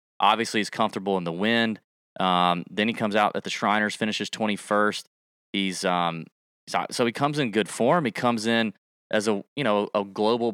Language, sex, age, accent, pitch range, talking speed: English, male, 20-39, American, 90-115 Hz, 190 wpm